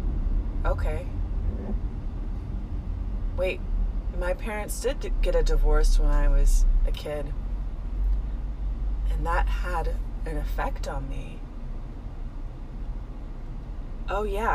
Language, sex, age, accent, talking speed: English, female, 30-49, American, 90 wpm